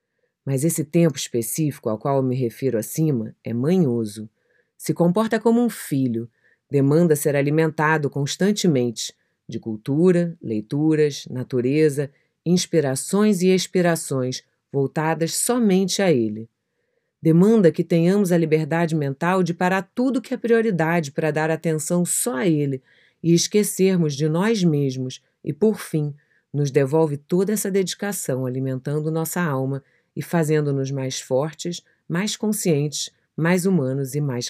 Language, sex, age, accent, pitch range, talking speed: Portuguese, female, 30-49, Brazilian, 135-175 Hz, 130 wpm